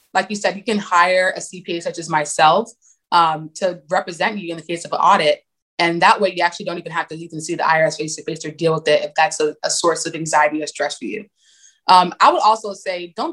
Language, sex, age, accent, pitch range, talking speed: English, female, 20-39, American, 160-205 Hz, 260 wpm